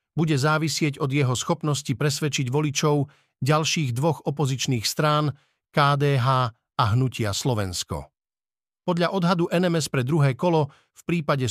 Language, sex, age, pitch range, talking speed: Slovak, male, 50-69, 140-165 Hz, 120 wpm